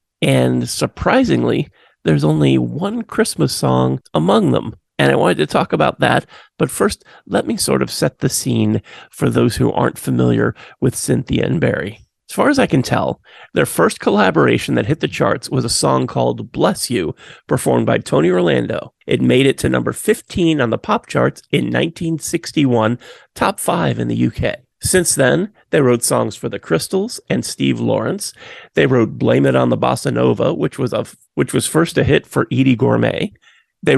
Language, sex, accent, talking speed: English, male, American, 185 wpm